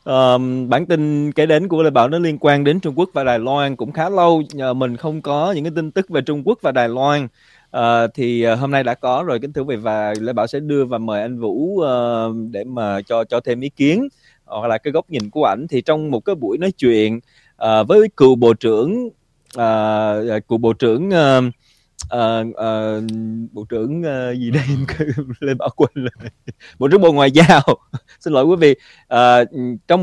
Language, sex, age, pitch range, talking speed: Vietnamese, male, 20-39, 120-155 Hz, 220 wpm